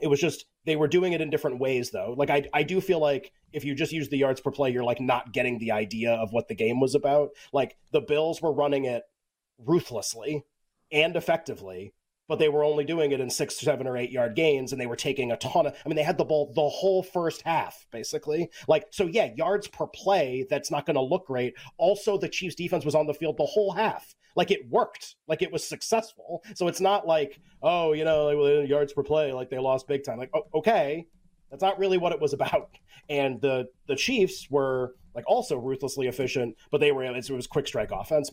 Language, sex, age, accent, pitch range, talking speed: English, male, 30-49, American, 130-170 Hz, 230 wpm